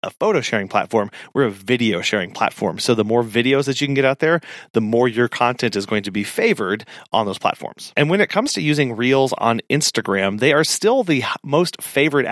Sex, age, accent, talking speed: male, 30-49, American, 225 wpm